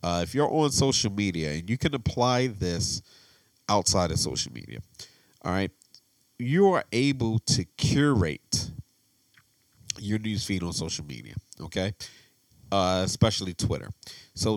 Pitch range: 95-125 Hz